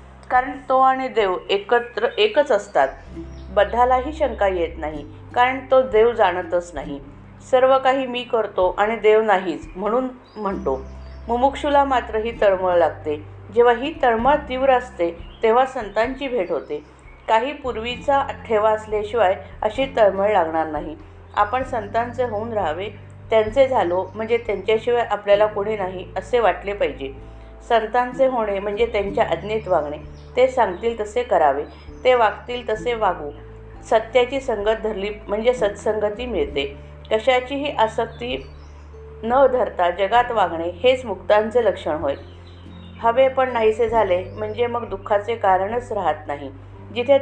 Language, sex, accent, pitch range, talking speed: Marathi, female, native, 165-245 Hz, 130 wpm